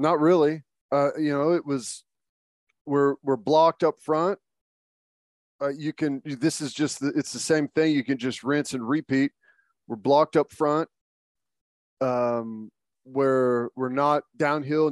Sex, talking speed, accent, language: male, 155 wpm, American, English